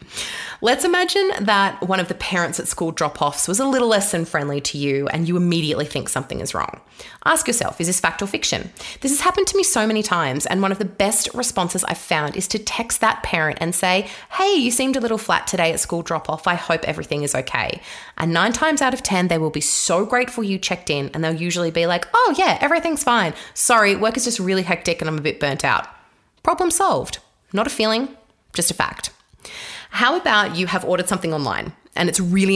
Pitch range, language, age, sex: 155-225 Hz, English, 20-39, female